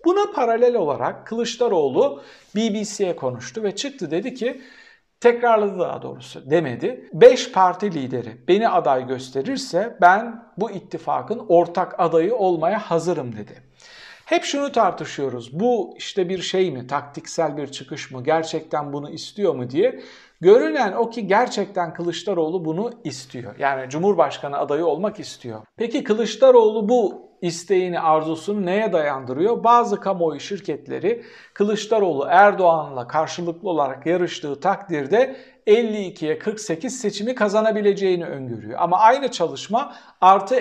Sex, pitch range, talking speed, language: male, 170-235 Hz, 120 wpm, Turkish